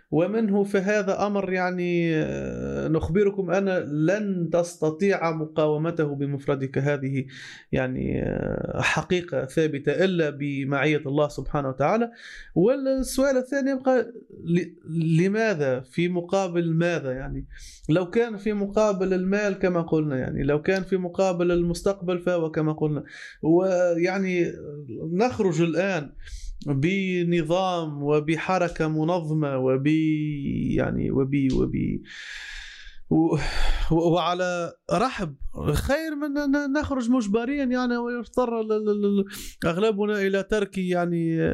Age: 30-49